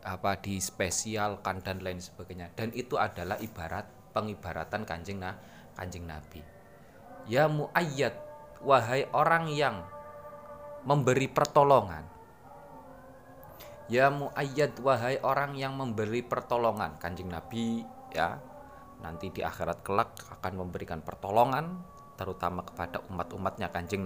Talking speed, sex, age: 105 wpm, male, 20-39